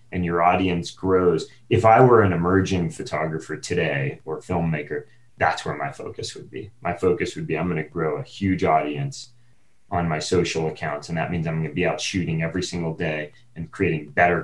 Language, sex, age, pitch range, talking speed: English, male, 30-49, 80-115 Hz, 205 wpm